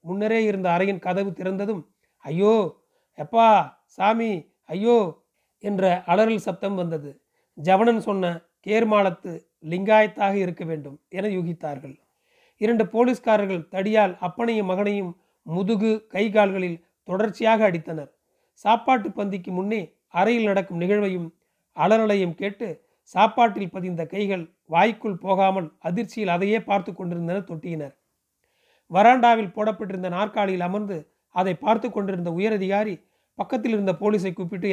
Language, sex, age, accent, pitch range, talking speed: Tamil, male, 40-59, native, 180-220 Hz, 105 wpm